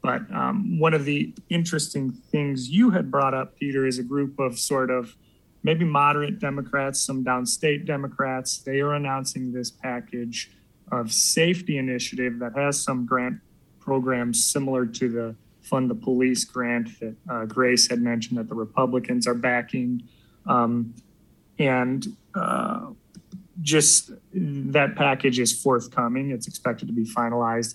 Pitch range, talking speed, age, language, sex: 120-145 Hz, 145 wpm, 30-49, English, male